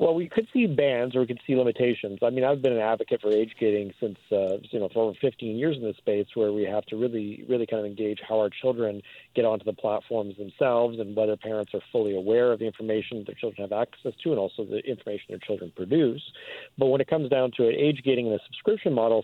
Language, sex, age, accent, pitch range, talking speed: English, male, 40-59, American, 105-130 Hz, 245 wpm